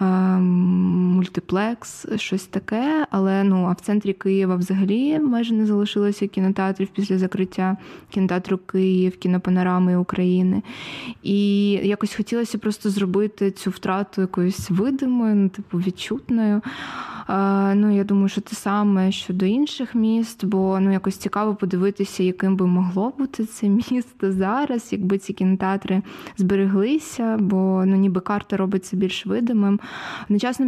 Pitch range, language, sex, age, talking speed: 190-215 Hz, Ukrainian, female, 20-39, 130 wpm